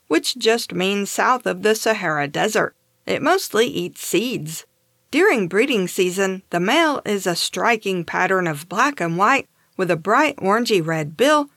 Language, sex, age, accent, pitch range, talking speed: English, female, 50-69, American, 170-230 Hz, 155 wpm